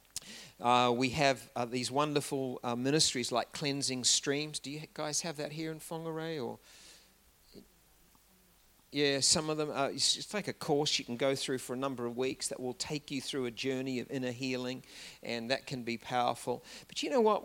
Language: English